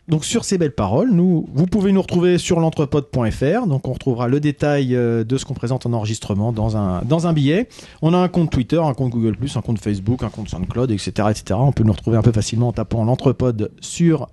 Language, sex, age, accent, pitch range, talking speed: French, male, 40-59, French, 120-160 Hz, 230 wpm